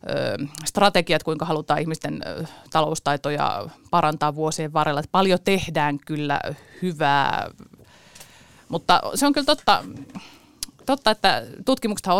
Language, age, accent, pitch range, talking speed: Finnish, 30-49, native, 150-195 Hz, 110 wpm